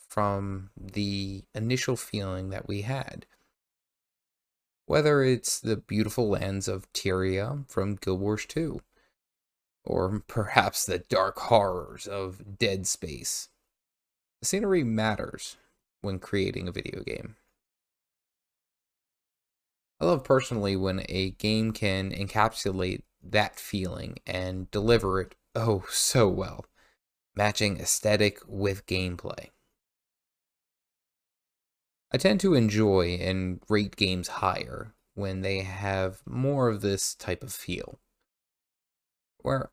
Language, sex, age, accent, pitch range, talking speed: English, male, 20-39, American, 95-110 Hz, 110 wpm